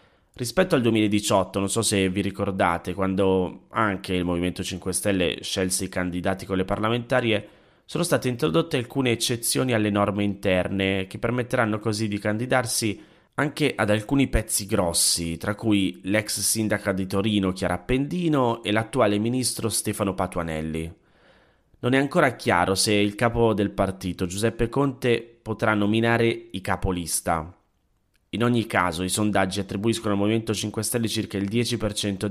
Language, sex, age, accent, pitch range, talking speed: Italian, male, 30-49, native, 90-115 Hz, 145 wpm